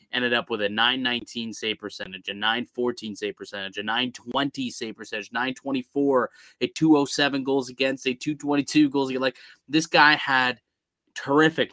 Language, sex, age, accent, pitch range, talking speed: English, male, 20-39, American, 110-130 Hz, 150 wpm